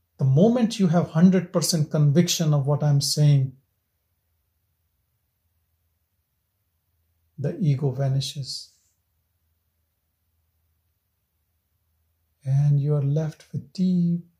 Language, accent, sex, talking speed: English, Indian, male, 80 wpm